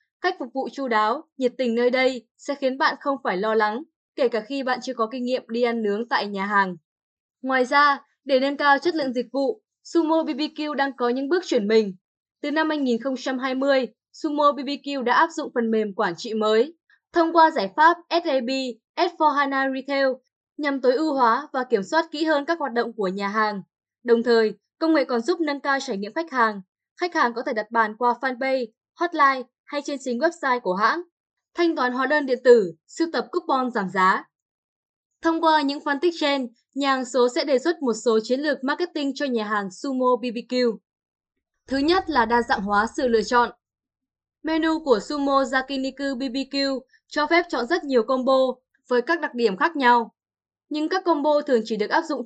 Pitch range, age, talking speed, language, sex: 235-295 Hz, 10-29, 200 wpm, Vietnamese, female